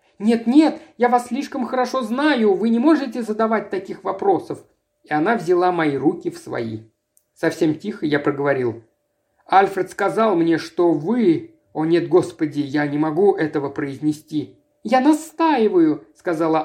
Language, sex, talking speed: Russian, male, 145 wpm